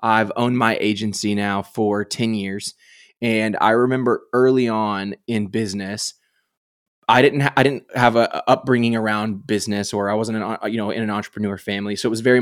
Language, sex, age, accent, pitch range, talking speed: English, male, 20-39, American, 105-125 Hz, 185 wpm